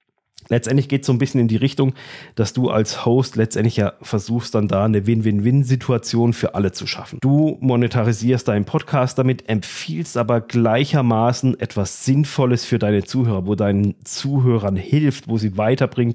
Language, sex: German, male